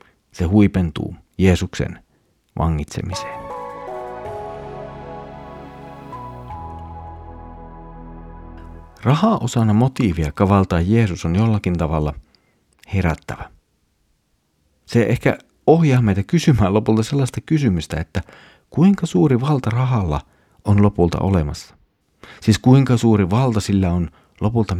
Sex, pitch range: male, 85-115 Hz